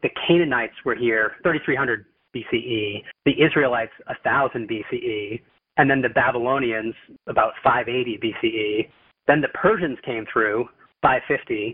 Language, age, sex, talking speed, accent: English, 30-49, male, 120 wpm, American